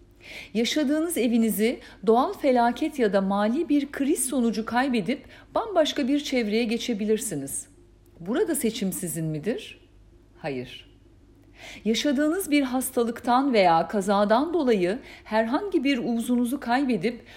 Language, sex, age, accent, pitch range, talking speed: Turkish, female, 50-69, native, 175-265 Hz, 105 wpm